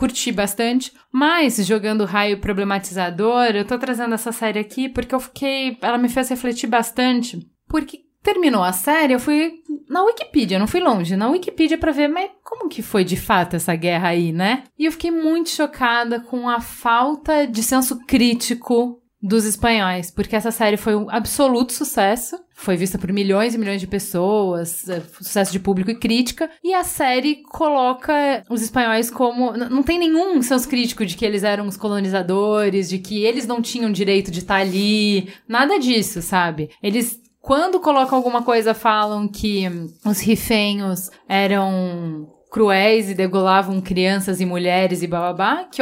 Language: Portuguese